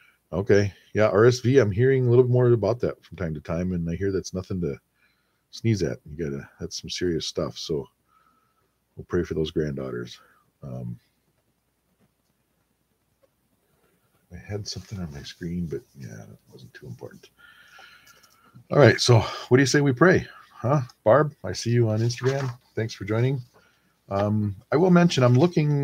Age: 50-69